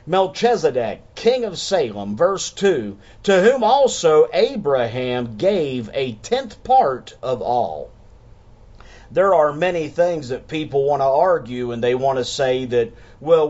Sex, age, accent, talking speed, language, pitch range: male, 50-69, American, 140 wpm, English, 120-180 Hz